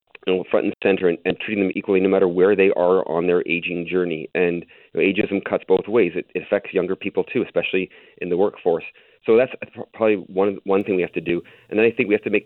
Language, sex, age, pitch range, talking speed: English, male, 40-59, 90-115 Hz, 260 wpm